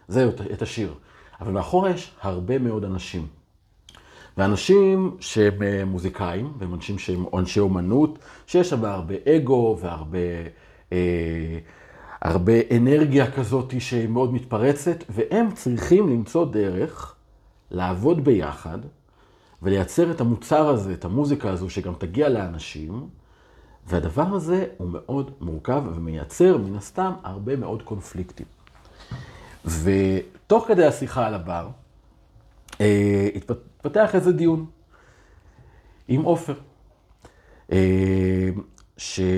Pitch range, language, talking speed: 90-130 Hz, Hebrew, 105 wpm